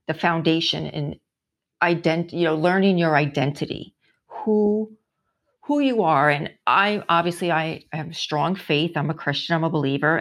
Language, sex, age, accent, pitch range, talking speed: English, female, 40-59, American, 155-195 Hz, 155 wpm